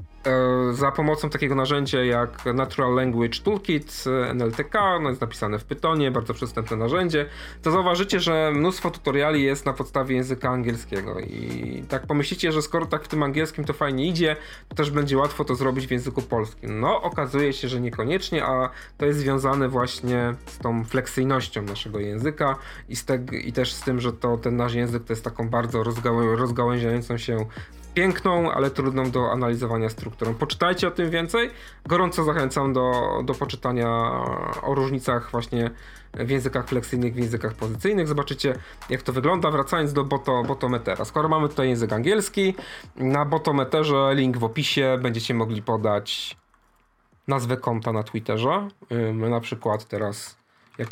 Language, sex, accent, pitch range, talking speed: Polish, male, native, 120-145 Hz, 160 wpm